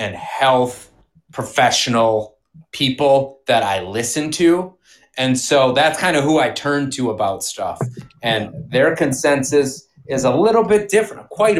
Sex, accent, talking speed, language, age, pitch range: male, American, 145 wpm, English, 30-49, 105-140 Hz